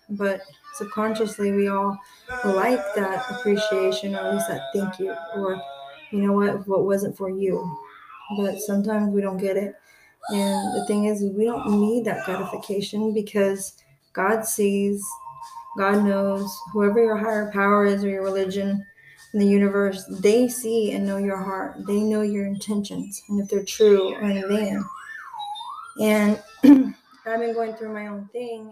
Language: English